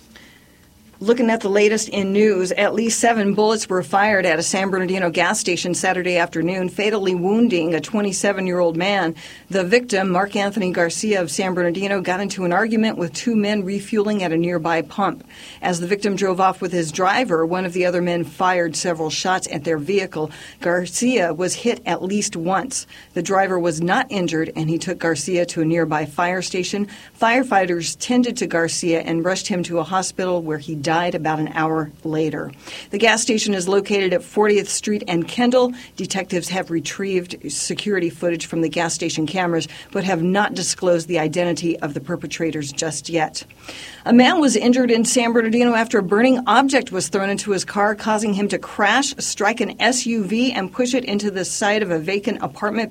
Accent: American